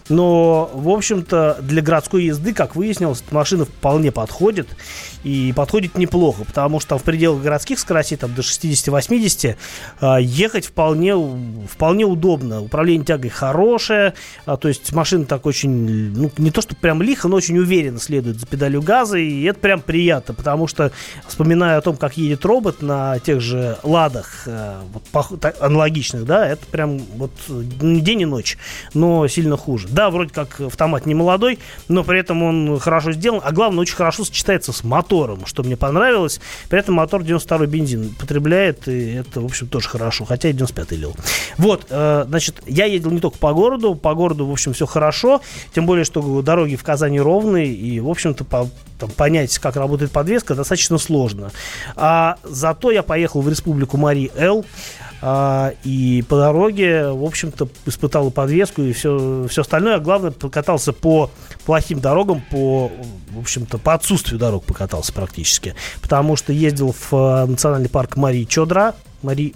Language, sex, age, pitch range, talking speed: Russian, male, 30-49, 135-170 Hz, 160 wpm